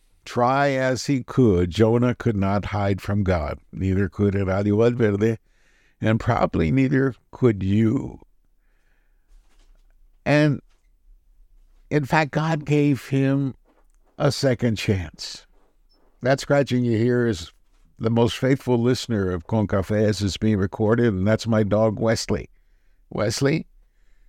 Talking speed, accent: 120 wpm, American